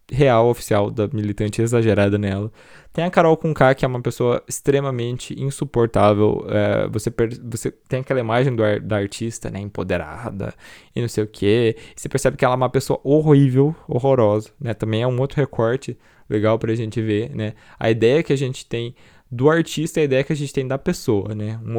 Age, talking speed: 20-39, 200 wpm